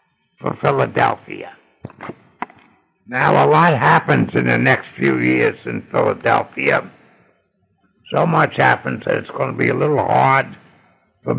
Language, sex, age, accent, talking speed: English, male, 60-79, American, 130 wpm